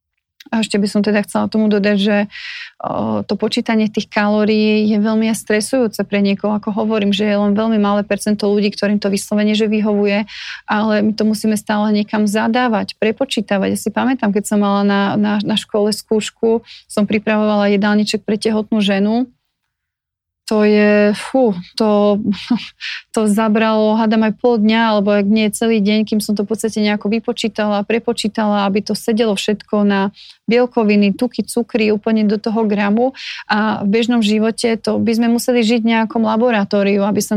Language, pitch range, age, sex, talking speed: Slovak, 210-225 Hz, 30-49, female, 170 wpm